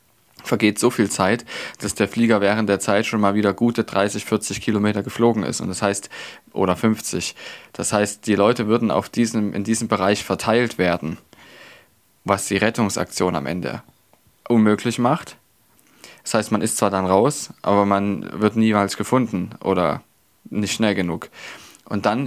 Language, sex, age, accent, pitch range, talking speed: German, male, 20-39, German, 95-110 Hz, 165 wpm